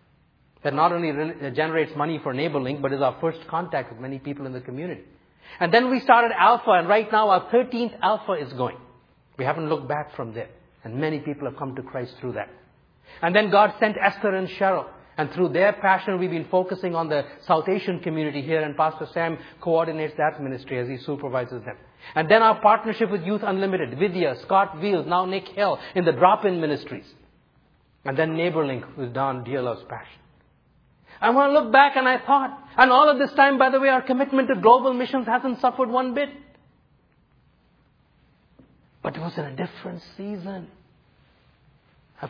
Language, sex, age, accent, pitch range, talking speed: English, male, 50-69, Indian, 155-220 Hz, 190 wpm